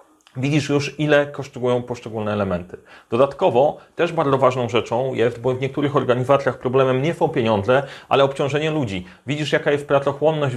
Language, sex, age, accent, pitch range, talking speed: Polish, male, 30-49, native, 115-150 Hz, 155 wpm